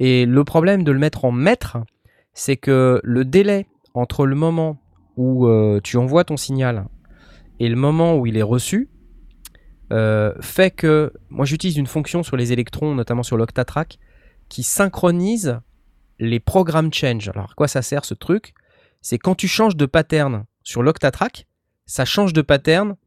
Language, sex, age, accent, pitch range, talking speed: French, male, 20-39, French, 115-160 Hz, 170 wpm